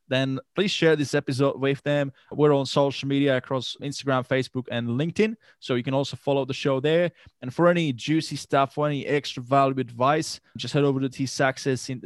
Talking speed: 200 wpm